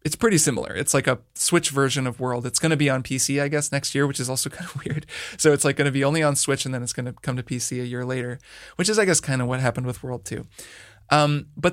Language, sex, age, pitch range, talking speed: English, male, 20-39, 130-150 Hz, 295 wpm